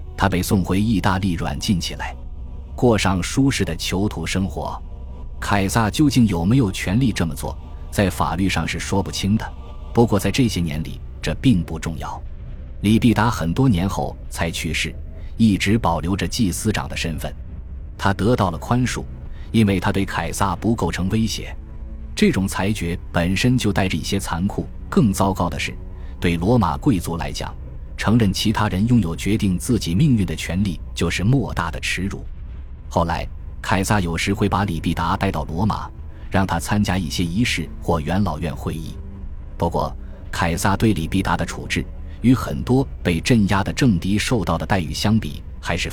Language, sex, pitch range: Chinese, male, 80-100 Hz